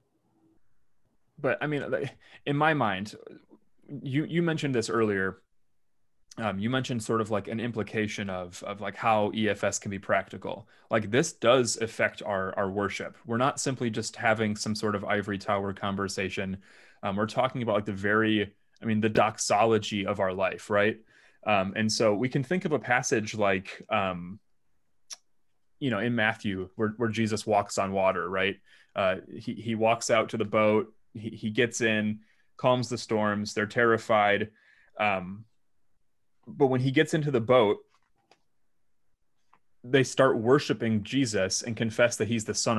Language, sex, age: English, male, 30-49